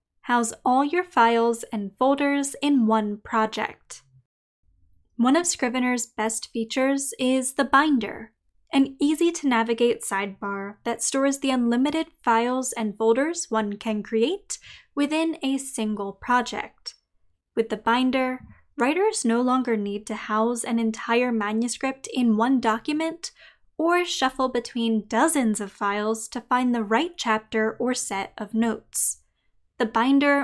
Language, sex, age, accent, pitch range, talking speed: English, female, 10-29, American, 220-275 Hz, 130 wpm